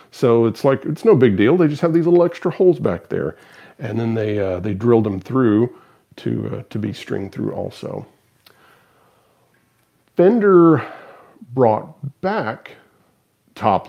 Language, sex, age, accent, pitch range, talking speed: English, male, 40-59, American, 105-140 Hz, 150 wpm